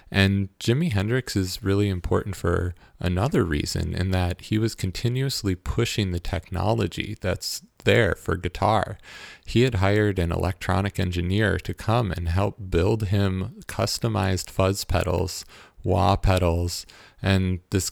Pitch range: 90-105 Hz